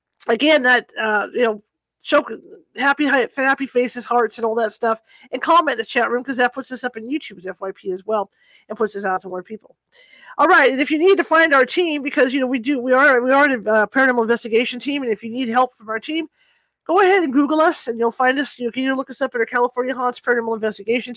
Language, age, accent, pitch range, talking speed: English, 40-59, American, 225-290 Hz, 265 wpm